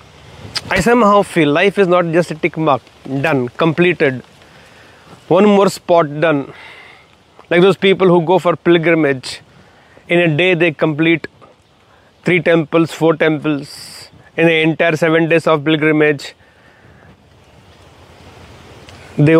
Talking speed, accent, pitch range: 125 wpm, Indian, 150-180 Hz